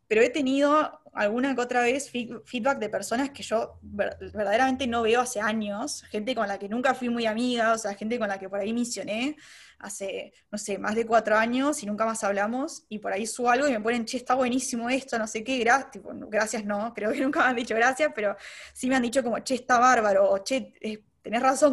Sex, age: female, 10-29